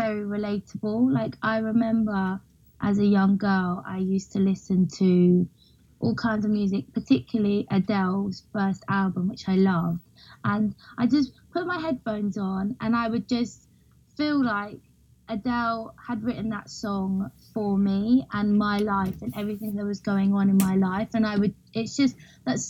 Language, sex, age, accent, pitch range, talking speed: English, female, 20-39, British, 195-220 Hz, 165 wpm